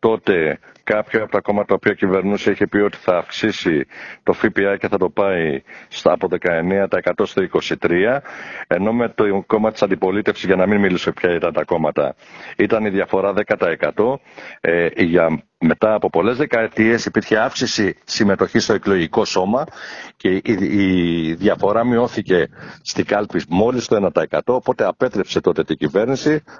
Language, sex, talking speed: Greek, male, 155 wpm